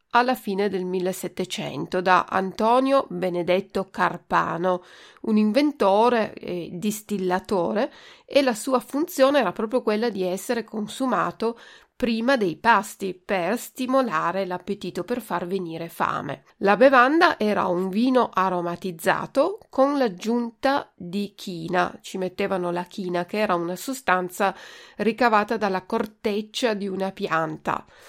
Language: Italian